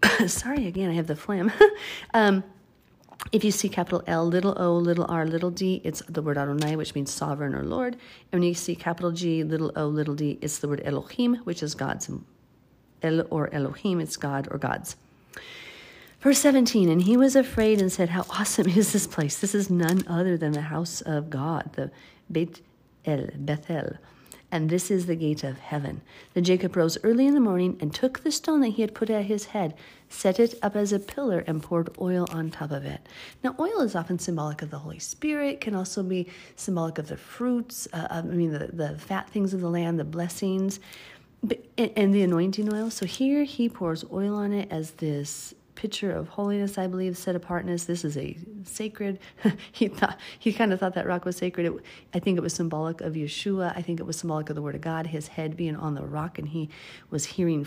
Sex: female